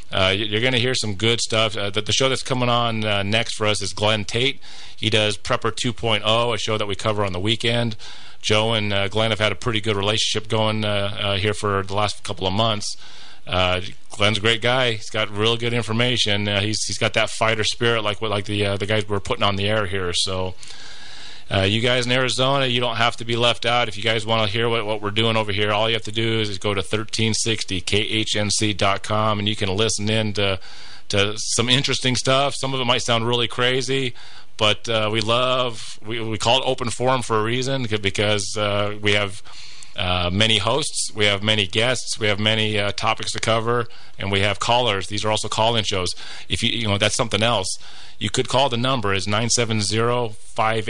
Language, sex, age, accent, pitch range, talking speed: English, male, 30-49, American, 105-120 Hz, 230 wpm